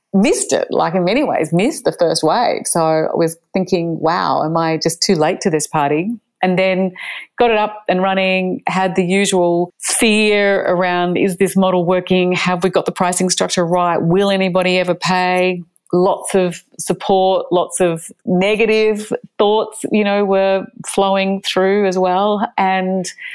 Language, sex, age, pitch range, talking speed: English, female, 30-49, 180-210 Hz, 165 wpm